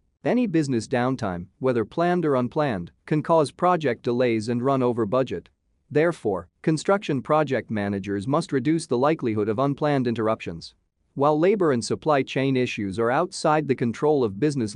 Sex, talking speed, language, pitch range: male, 155 wpm, English, 110-150 Hz